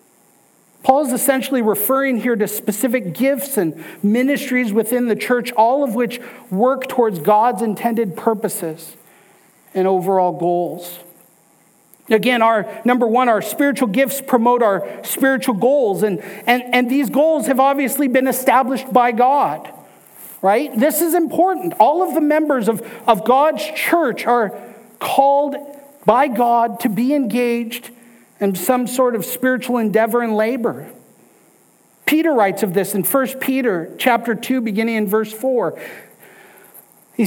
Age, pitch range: 50-69, 210-265 Hz